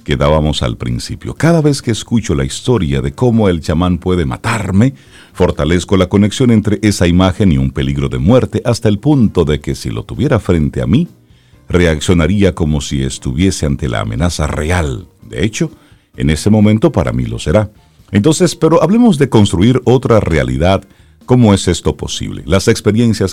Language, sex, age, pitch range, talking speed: Spanish, male, 50-69, 75-115 Hz, 175 wpm